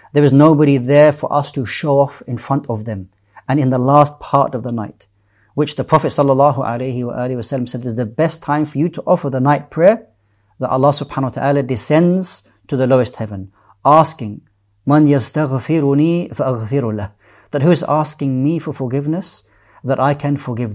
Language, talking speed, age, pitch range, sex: English, 175 wpm, 40-59, 115-145 Hz, male